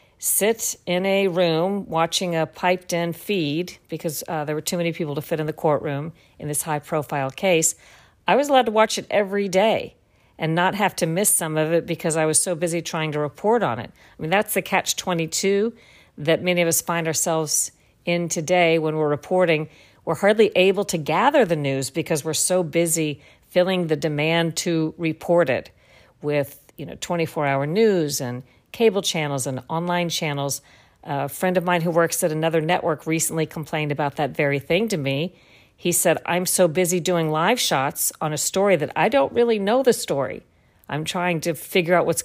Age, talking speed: 50-69, 190 wpm